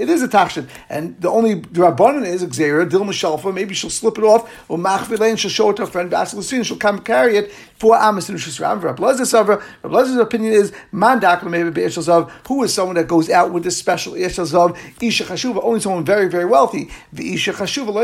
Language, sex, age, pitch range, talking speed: English, male, 50-69, 180-225 Hz, 175 wpm